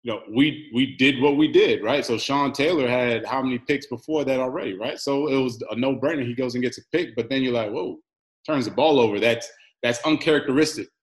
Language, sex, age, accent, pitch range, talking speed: English, male, 20-39, American, 120-150 Hz, 235 wpm